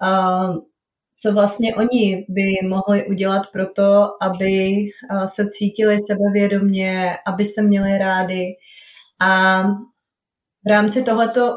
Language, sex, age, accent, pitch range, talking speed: Czech, female, 30-49, native, 190-215 Hz, 110 wpm